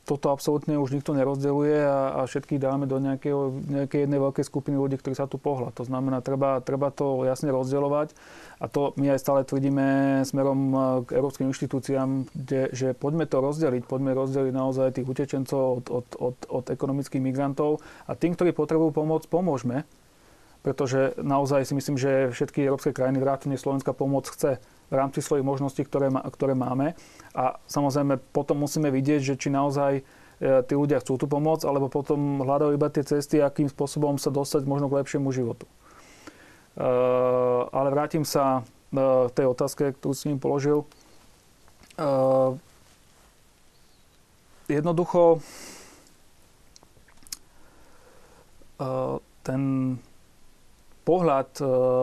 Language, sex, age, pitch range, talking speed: Slovak, male, 30-49, 130-145 Hz, 145 wpm